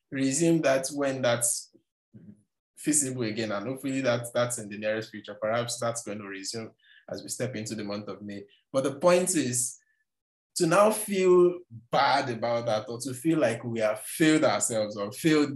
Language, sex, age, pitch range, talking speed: English, male, 20-39, 105-130 Hz, 180 wpm